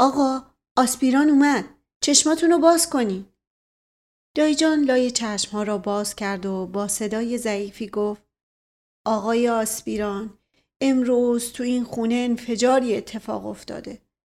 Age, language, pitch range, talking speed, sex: 40-59, Persian, 220-295 Hz, 115 wpm, female